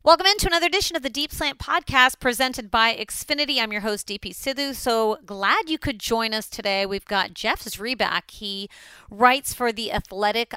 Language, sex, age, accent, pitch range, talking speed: English, female, 40-59, American, 185-230 Hz, 195 wpm